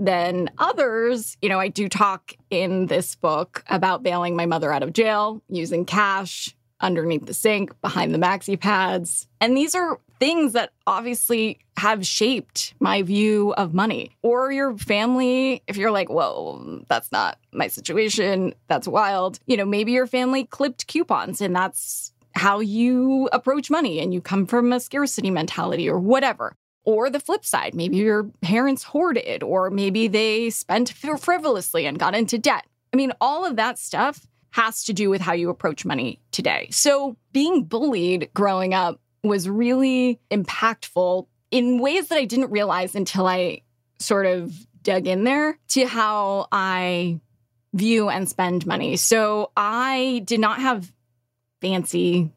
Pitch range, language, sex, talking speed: 180-245 Hz, English, female, 160 wpm